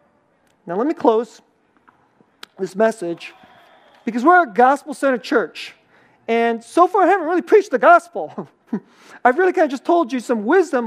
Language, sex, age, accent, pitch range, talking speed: English, male, 40-59, American, 220-285 Hz, 160 wpm